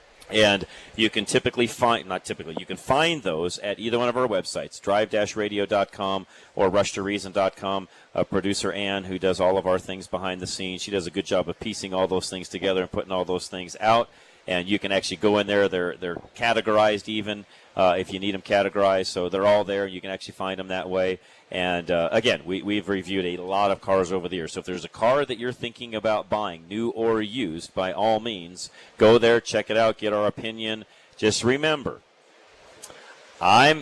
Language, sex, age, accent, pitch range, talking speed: English, male, 40-59, American, 95-110 Hz, 205 wpm